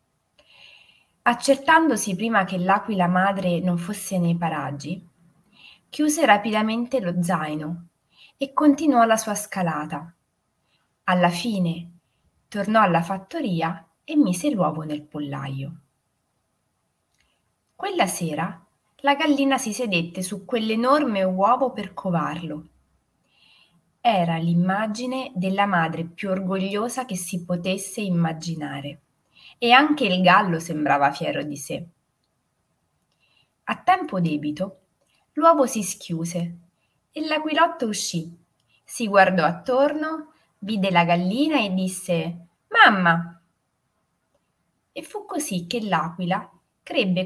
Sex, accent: female, native